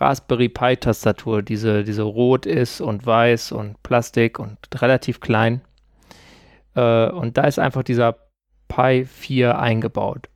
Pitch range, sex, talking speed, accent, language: 115-135 Hz, male, 125 wpm, German, German